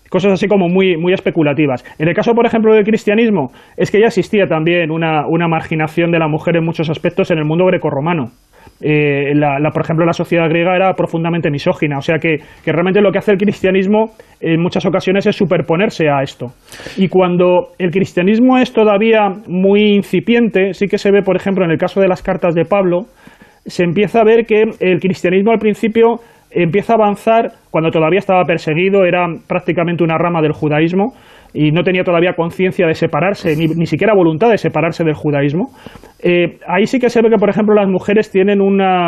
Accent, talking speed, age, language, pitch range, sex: Spanish, 200 wpm, 30-49, English, 170-205 Hz, male